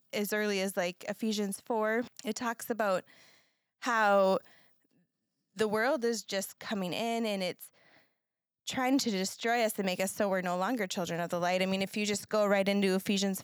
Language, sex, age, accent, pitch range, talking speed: English, female, 20-39, American, 190-225 Hz, 190 wpm